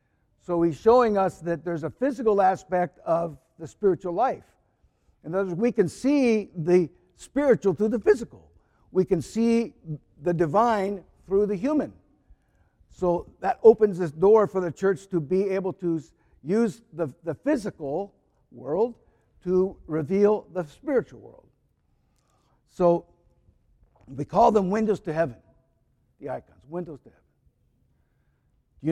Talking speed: 140 wpm